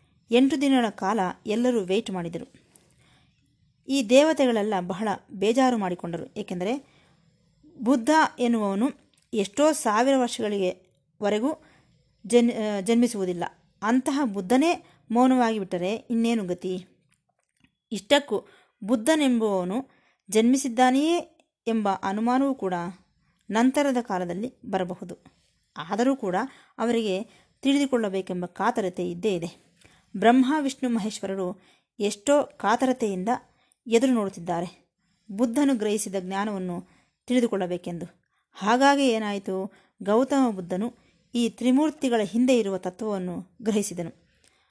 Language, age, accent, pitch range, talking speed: Kannada, 20-39, native, 190-255 Hz, 85 wpm